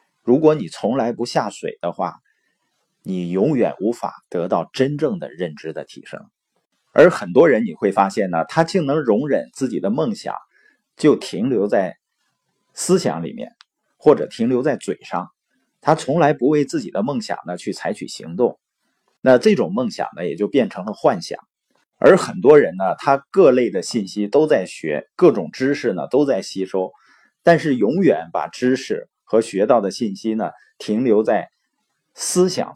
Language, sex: Chinese, male